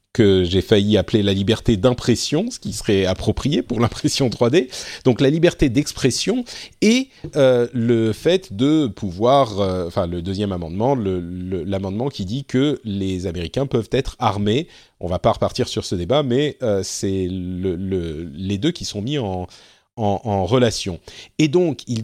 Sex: male